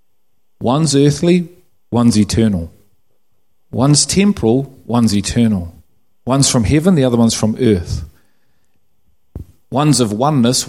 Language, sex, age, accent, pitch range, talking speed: English, male, 40-59, Australian, 110-130 Hz, 105 wpm